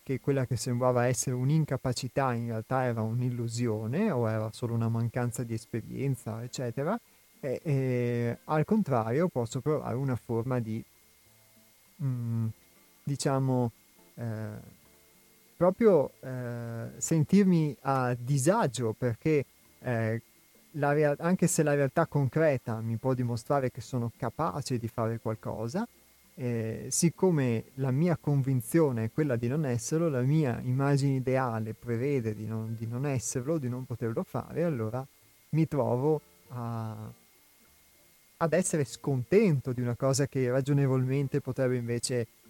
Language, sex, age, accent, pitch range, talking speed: Italian, male, 30-49, native, 115-140 Hz, 125 wpm